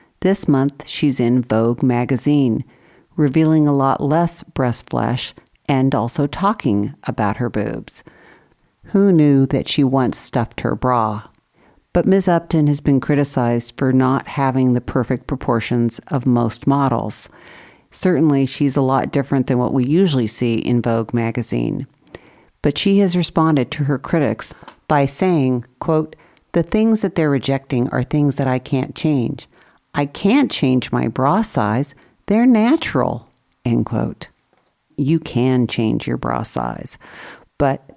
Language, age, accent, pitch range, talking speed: English, 50-69, American, 125-160 Hz, 145 wpm